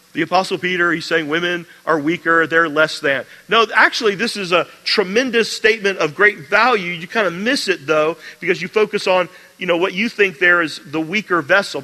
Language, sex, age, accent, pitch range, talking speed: English, male, 40-59, American, 160-200 Hz, 210 wpm